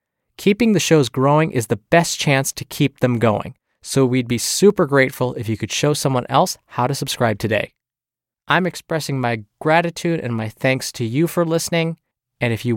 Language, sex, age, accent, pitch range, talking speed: English, male, 20-39, American, 120-165 Hz, 195 wpm